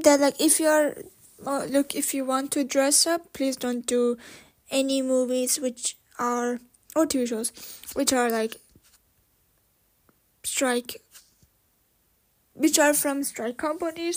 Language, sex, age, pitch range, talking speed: English, female, 10-29, 235-285 Hz, 135 wpm